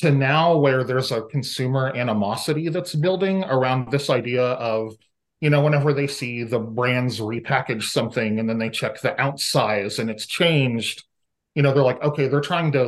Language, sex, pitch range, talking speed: English, male, 115-140 Hz, 185 wpm